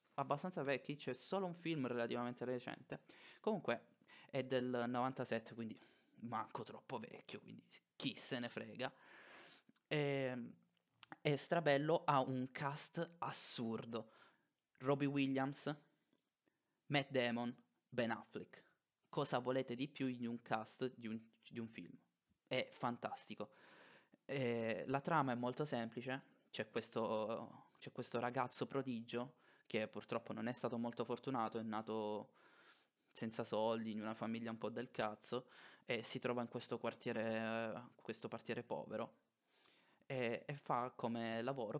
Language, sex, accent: Italian, male, native